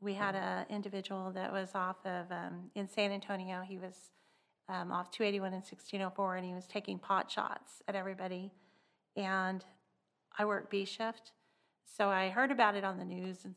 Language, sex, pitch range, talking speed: English, female, 185-205 Hz, 175 wpm